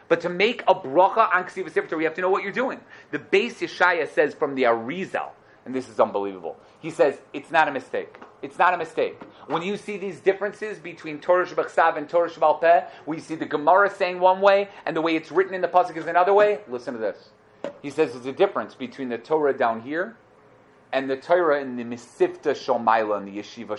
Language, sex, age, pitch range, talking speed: English, male, 30-49, 145-200 Hz, 225 wpm